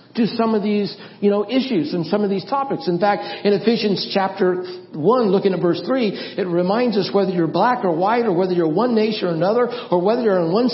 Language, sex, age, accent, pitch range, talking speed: English, male, 60-79, American, 190-240 Hz, 235 wpm